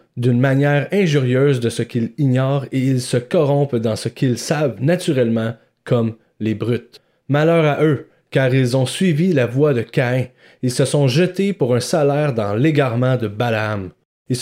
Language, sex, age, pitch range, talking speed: French, male, 30-49, 120-155 Hz, 175 wpm